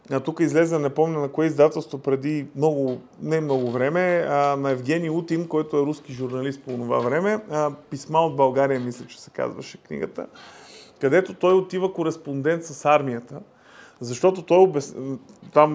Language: Bulgarian